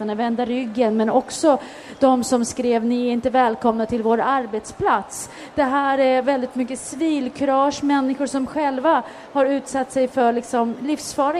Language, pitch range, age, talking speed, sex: Swedish, 220-270 Hz, 30-49, 160 wpm, female